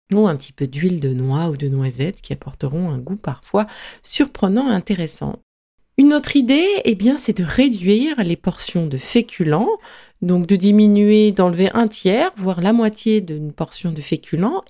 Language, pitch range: French, 150-220 Hz